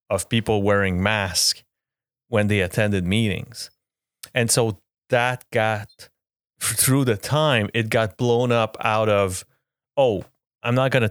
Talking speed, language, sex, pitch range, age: 140 wpm, English, male, 100-120 Hz, 30-49